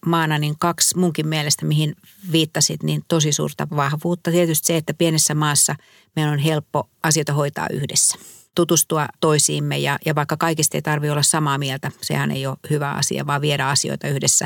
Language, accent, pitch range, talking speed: Finnish, native, 135-160 Hz, 175 wpm